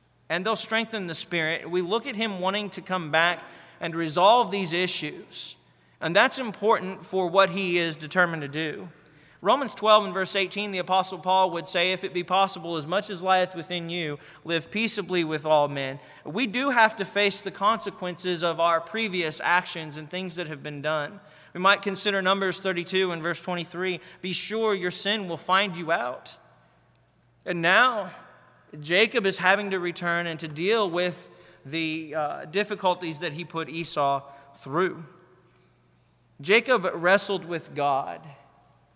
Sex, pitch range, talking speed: male, 150-190 Hz, 165 wpm